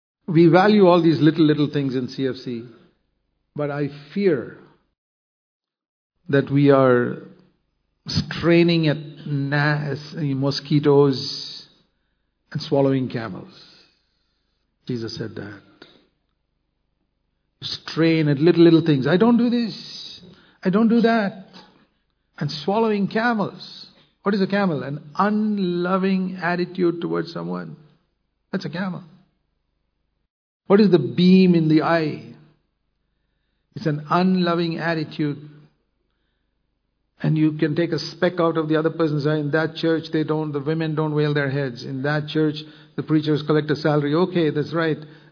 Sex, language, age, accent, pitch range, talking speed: male, English, 50-69, Indian, 145-180 Hz, 130 wpm